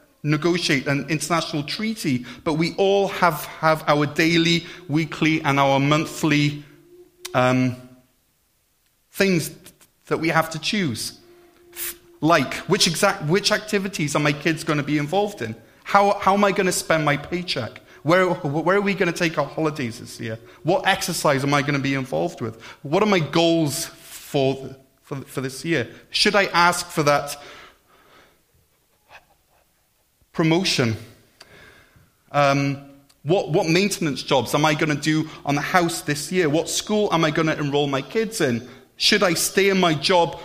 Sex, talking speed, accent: male, 170 wpm, British